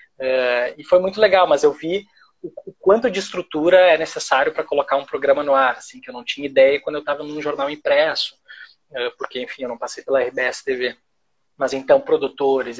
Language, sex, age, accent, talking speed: Portuguese, male, 20-39, Brazilian, 205 wpm